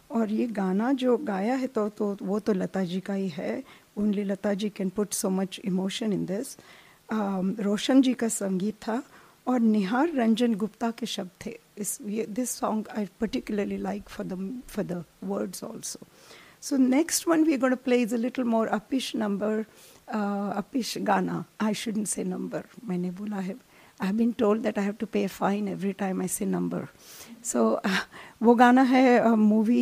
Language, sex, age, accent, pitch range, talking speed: English, female, 50-69, Indian, 195-230 Hz, 165 wpm